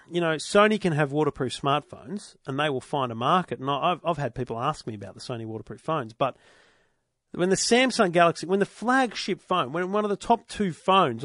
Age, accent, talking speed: 40-59, Australian, 220 wpm